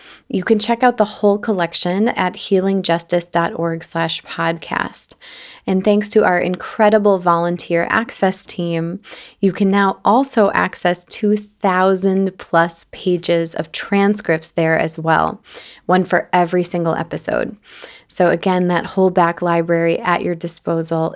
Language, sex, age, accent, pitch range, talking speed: English, female, 20-39, American, 165-200 Hz, 130 wpm